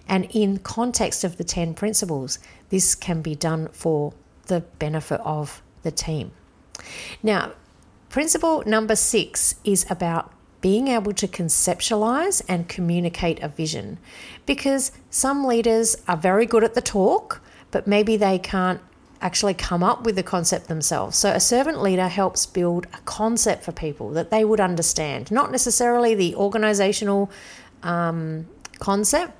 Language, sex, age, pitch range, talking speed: English, female, 40-59, 170-225 Hz, 145 wpm